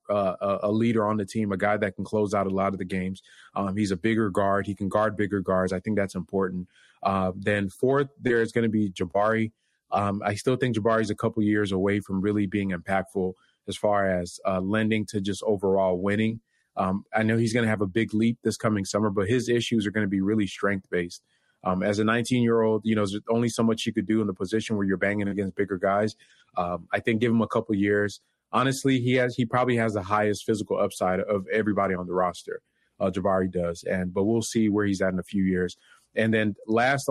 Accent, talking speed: American, 240 wpm